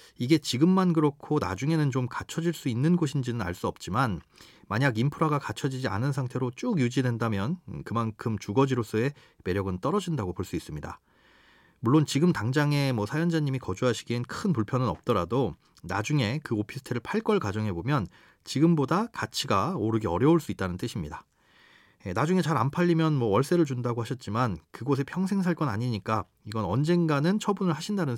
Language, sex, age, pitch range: Korean, male, 30-49, 115-160 Hz